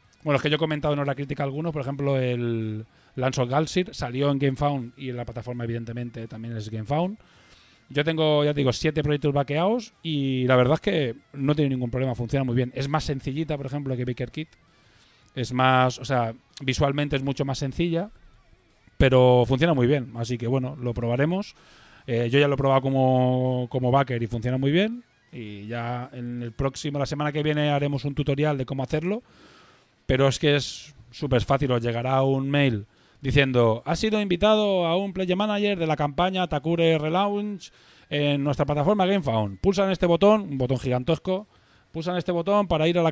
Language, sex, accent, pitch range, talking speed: Spanish, male, Spanish, 125-155 Hz, 195 wpm